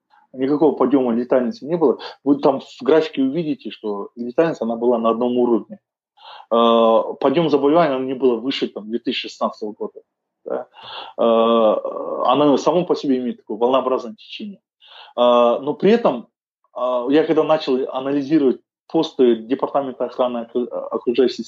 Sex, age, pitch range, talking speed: male, 20-39, 120-175 Hz, 120 wpm